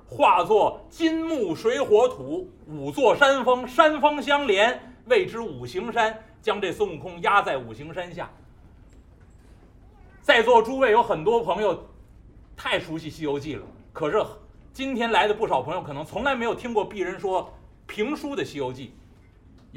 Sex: male